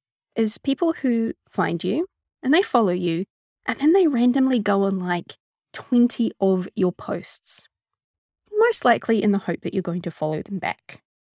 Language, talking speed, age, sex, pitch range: English, 170 wpm, 20-39, female, 185-265 Hz